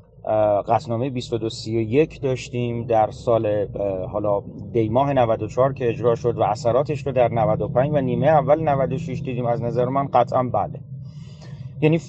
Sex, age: male, 30-49